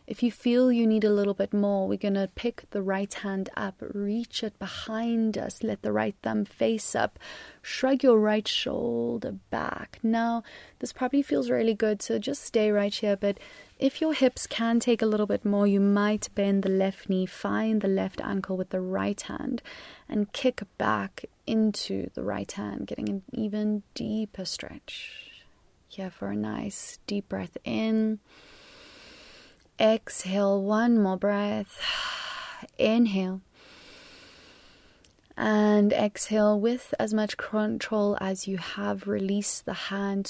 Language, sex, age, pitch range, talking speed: English, female, 30-49, 190-220 Hz, 155 wpm